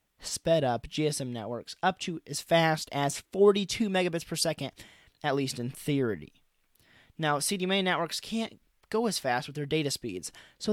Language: English